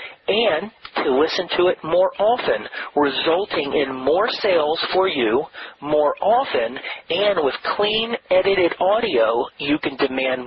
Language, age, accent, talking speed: English, 40-59, American, 130 wpm